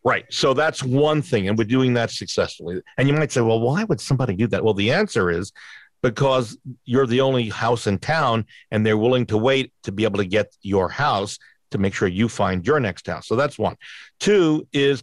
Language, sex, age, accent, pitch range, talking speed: English, male, 50-69, American, 105-130 Hz, 225 wpm